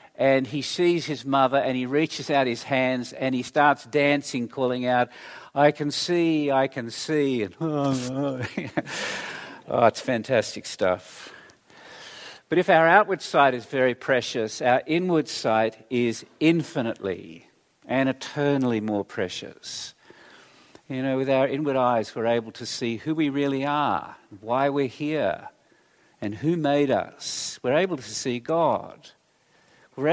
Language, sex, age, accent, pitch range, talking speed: English, male, 50-69, Australian, 125-160 Hz, 145 wpm